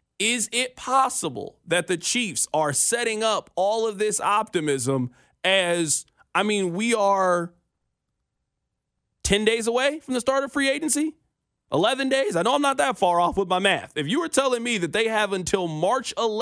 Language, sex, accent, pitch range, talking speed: English, male, American, 180-245 Hz, 180 wpm